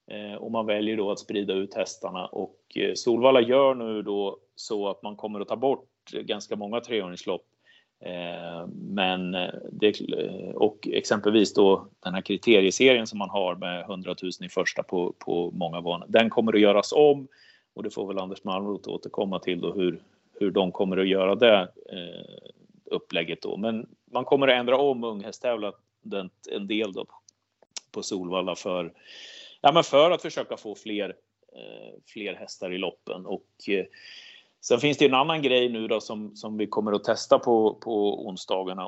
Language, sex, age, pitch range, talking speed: Swedish, male, 30-49, 100-135 Hz, 175 wpm